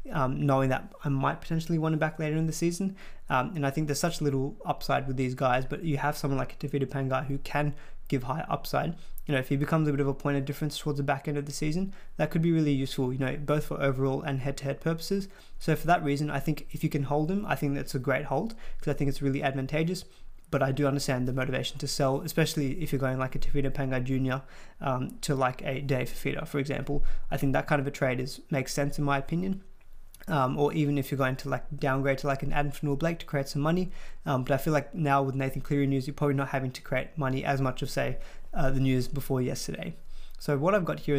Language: English